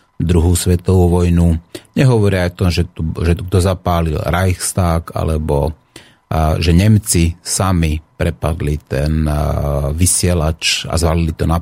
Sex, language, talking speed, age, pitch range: male, Slovak, 130 wpm, 30-49, 85-105 Hz